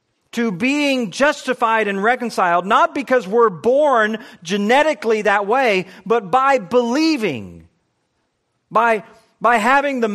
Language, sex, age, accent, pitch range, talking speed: English, male, 40-59, American, 170-240 Hz, 110 wpm